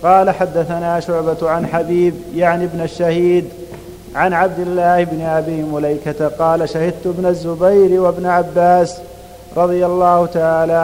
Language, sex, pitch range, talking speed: Arabic, male, 160-180 Hz, 125 wpm